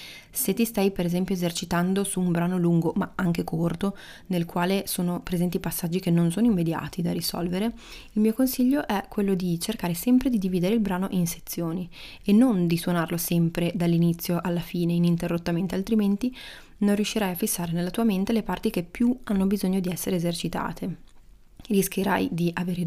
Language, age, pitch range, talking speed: Italian, 20-39, 175-210 Hz, 175 wpm